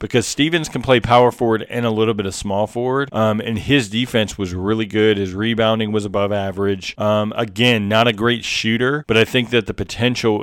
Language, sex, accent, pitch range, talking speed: English, male, American, 105-120 Hz, 215 wpm